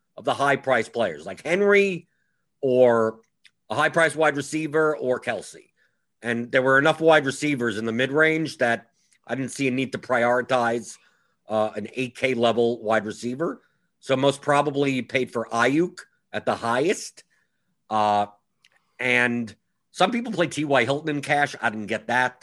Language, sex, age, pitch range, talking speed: English, male, 50-69, 110-145 Hz, 165 wpm